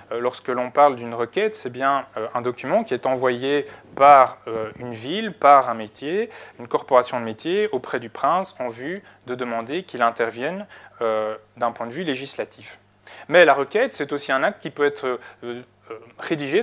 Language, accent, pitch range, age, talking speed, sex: French, French, 115-150 Hz, 20-39, 185 wpm, male